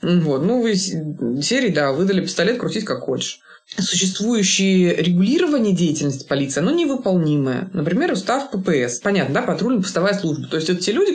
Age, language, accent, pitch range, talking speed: 20-39, Russian, native, 150-200 Hz, 155 wpm